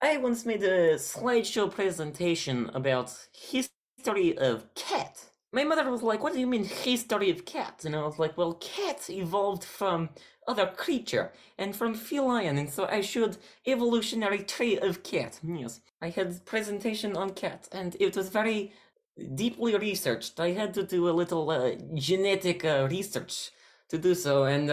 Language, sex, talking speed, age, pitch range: English, male, 165 wpm, 30-49, 140-215 Hz